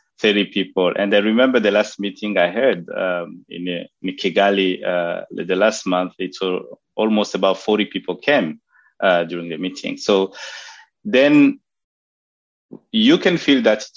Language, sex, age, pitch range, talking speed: English, male, 30-49, 90-110 Hz, 155 wpm